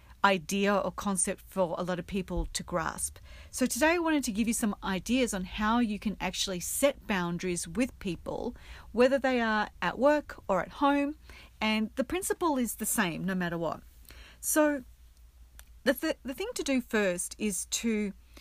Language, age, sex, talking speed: English, 40-59, female, 180 wpm